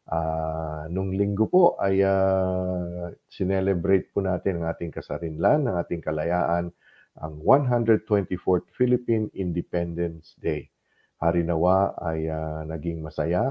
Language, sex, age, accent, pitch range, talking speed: Filipino, male, 50-69, native, 85-100 Hz, 110 wpm